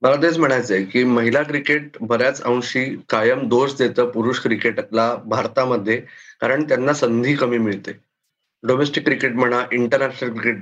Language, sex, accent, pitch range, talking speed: Marathi, male, native, 120-150 Hz, 135 wpm